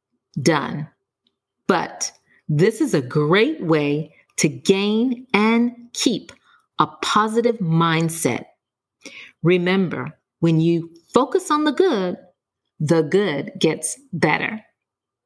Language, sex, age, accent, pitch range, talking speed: English, female, 40-59, American, 160-220 Hz, 100 wpm